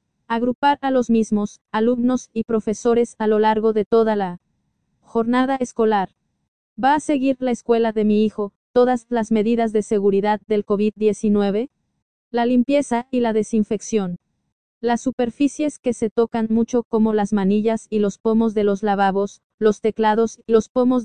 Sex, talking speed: female, 155 wpm